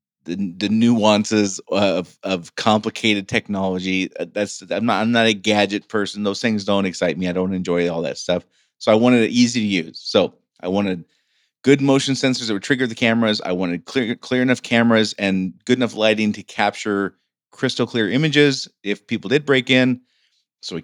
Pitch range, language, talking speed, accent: 95-120 Hz, English, 185 wpm, American